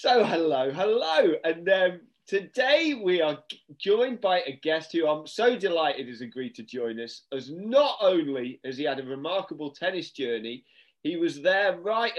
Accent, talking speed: British, 170 wpm